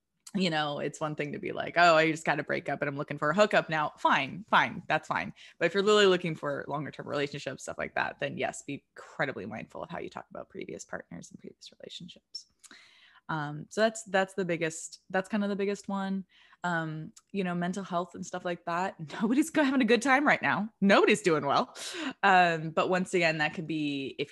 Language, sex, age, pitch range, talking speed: English, female, 20-39, 150-195 Hz, 225 wpm